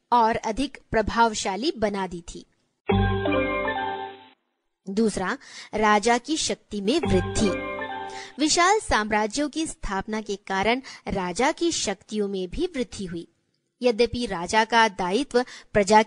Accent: native